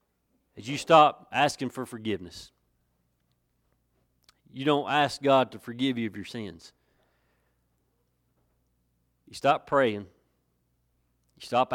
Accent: American